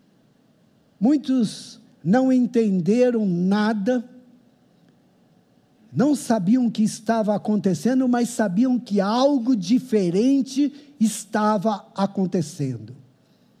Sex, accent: male, Brazilian